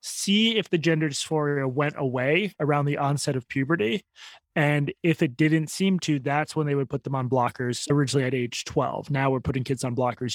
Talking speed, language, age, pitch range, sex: 210 wpm, English, 20-39, 140-170 Hz, male